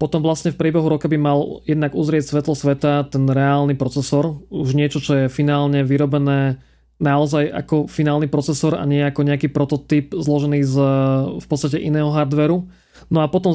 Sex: male